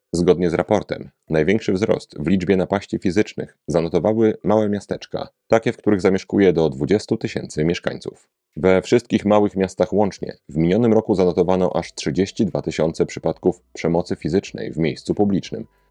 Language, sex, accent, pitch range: Polish, male, native, 85-105 Hz